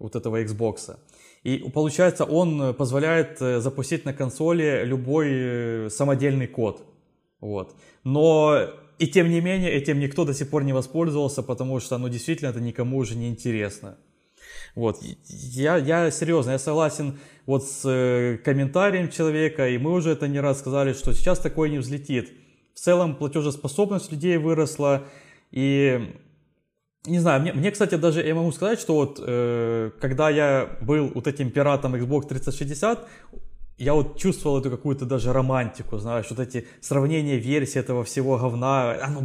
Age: 20-39